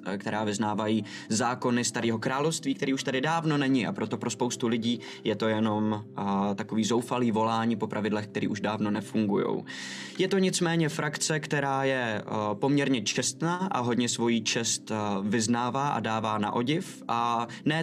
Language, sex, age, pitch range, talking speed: Czech, male, 20-39, 110-145 Hz, 165 wpm